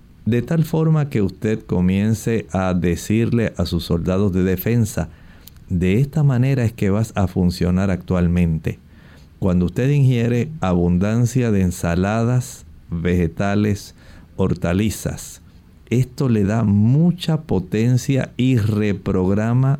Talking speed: 110 wpm